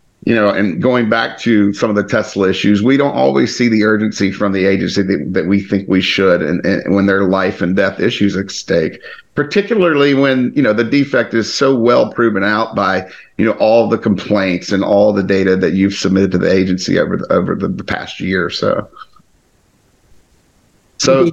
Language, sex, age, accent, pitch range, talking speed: English, male, 50-69, American, 95-120 Hz, 205 wpm